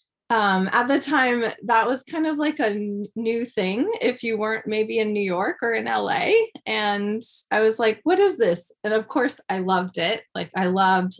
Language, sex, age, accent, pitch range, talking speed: English, female, 20-39, American, 190-240 Hz, 205 wpm